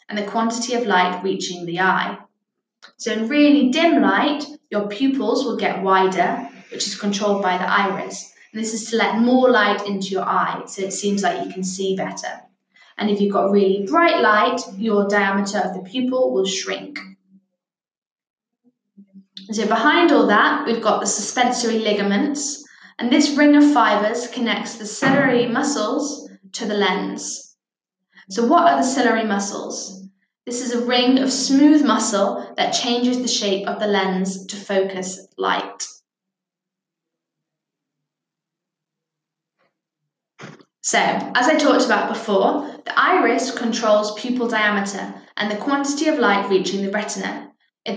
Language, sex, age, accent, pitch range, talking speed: English, female, 10-29, British, 190-245 Hz, 150 wpm